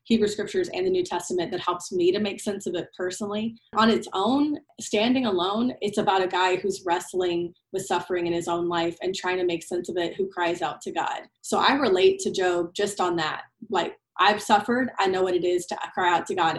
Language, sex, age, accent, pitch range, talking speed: English, female, 30-49, American, 175-230 Hz, 235 wpm